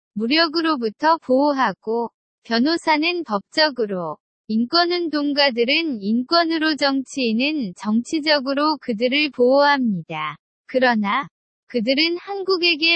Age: 20-39